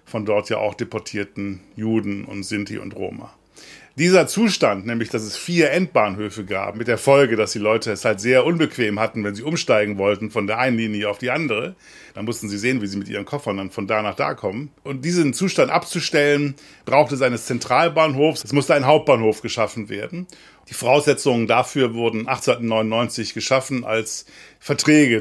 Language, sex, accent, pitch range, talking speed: German, male, German, 110-145 Hz, 185 wpm